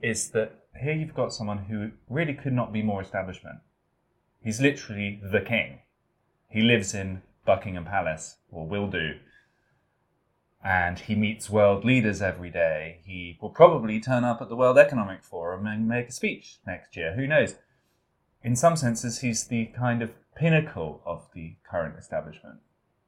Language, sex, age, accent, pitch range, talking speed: English, male, 20-39, British, 100-125 Hz, 160 wpm